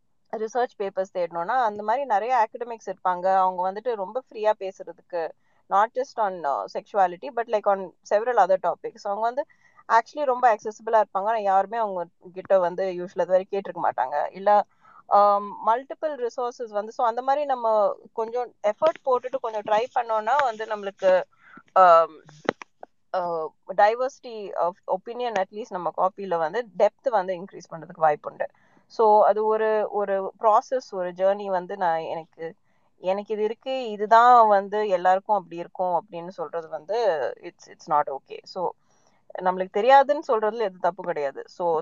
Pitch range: 180-230 Hz